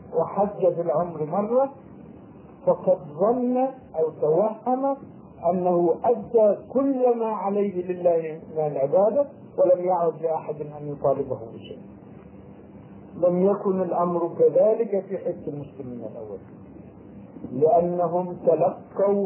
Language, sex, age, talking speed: Arabic, male, 50-69, 95 wpm